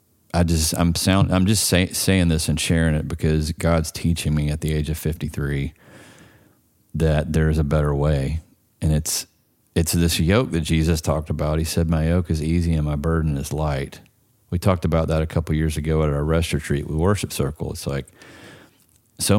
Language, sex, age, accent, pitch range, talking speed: English, male, 40-59, American, 80-95 Hz, 200 wpm